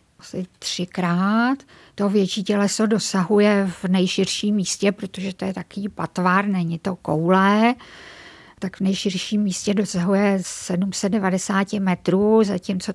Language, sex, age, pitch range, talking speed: Czech, female, 50-69, 180-205 Hz, 115 wpm